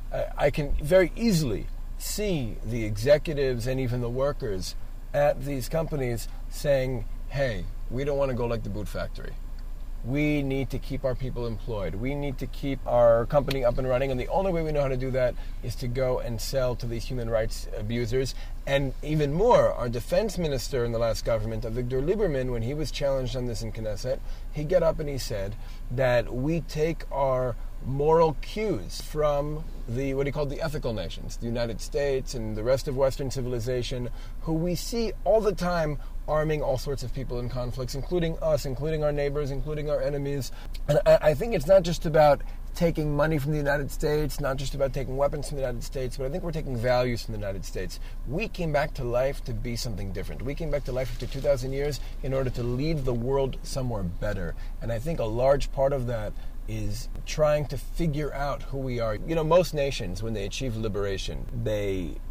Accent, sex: American, male